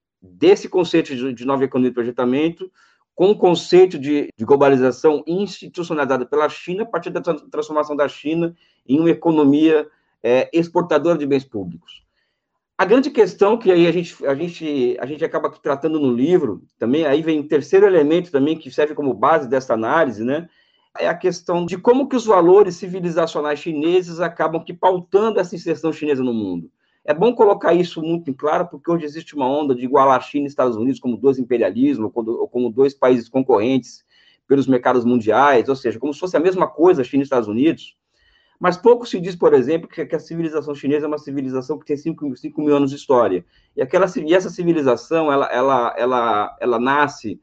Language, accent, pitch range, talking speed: Portuguese, Brazilian, 135-175 Hz, 190 wpm